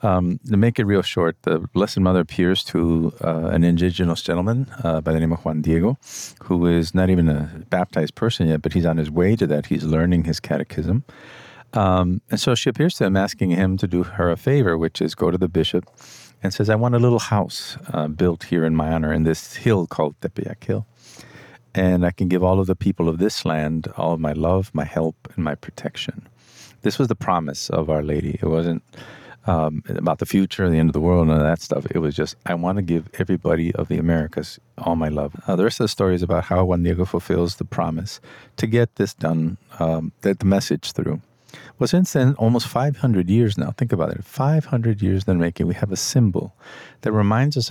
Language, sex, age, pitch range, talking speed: English, male, 50-69, 85-110 Hz, 230 wpm